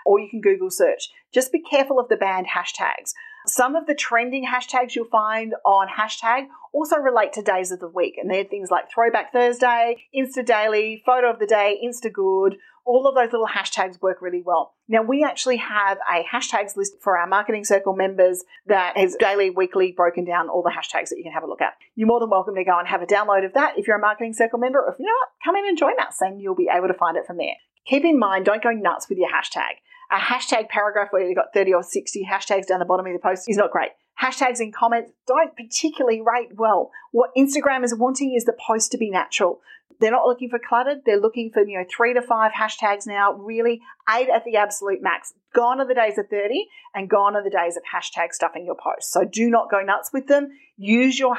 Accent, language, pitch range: Australian, English, 195-270 Hz